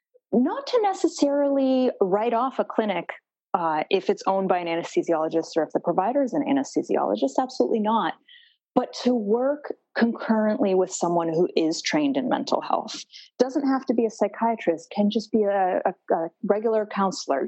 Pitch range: 185-265 Hz